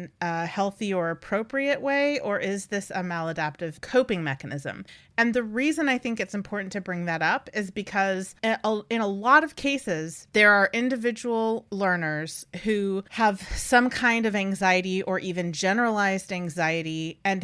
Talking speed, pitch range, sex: 155 wpm, 180-225 Hz, female